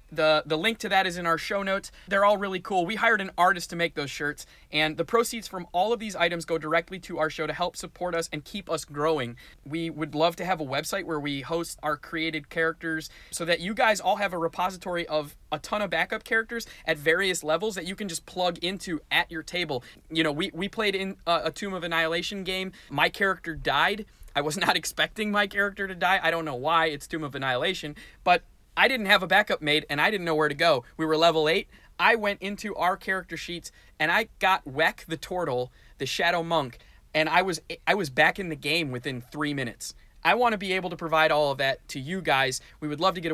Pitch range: 150-185 Hz